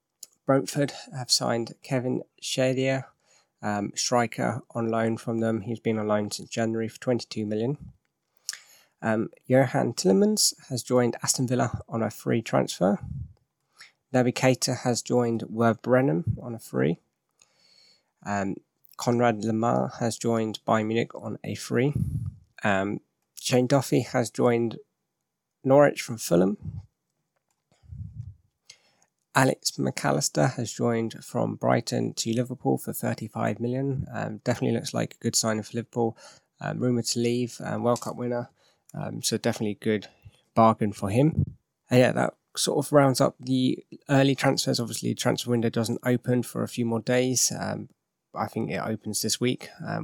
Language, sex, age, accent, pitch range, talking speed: English, male, 20-39, British, 115-130 Hz, 145 wpm